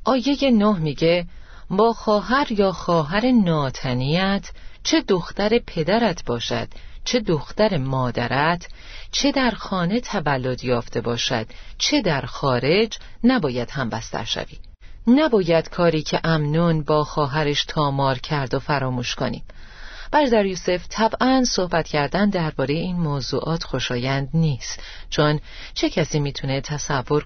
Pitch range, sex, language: 140-195 Hz, female, Persian